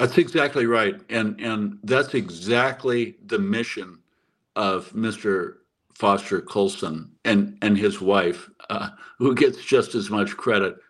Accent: American